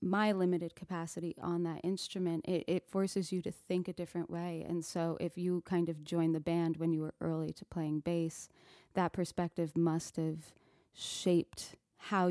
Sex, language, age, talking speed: female, English, 20-39, 180 wpm